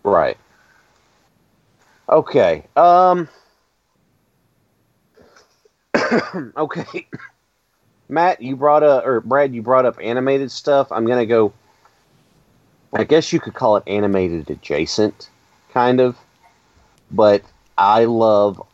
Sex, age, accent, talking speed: male, 30-49, American, 100 wpm